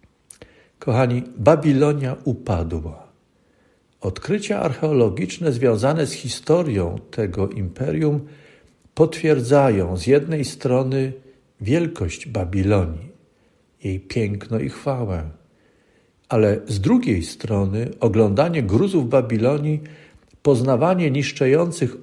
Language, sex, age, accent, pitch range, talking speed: Polish, male, 50-69, native, 110-145 Hz, 80 wpm